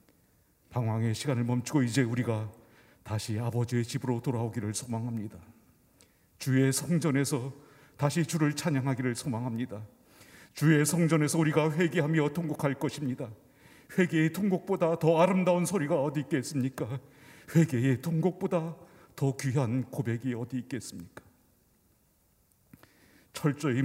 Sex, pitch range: male, 130-175 Hz